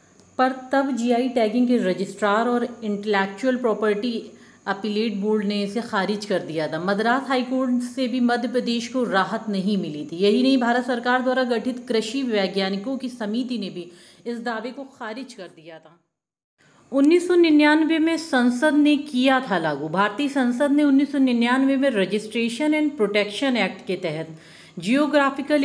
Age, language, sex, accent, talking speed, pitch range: 40-59, Hindi, female, native, 155 wpm, 210-275 Hz